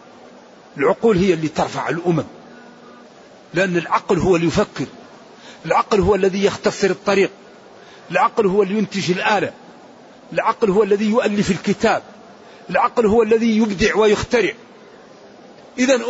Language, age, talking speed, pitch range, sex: Arabic, 50-69, 115 wpm, 175-225 Hz, male